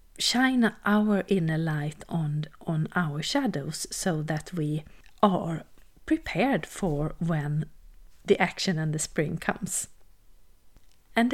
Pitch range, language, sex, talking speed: 160-215 Hz, English, female, 115 wpm